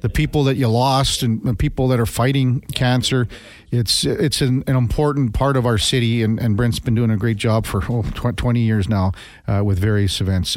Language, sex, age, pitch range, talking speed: English, male, 50-69, 120-175 Hz, 215 wpm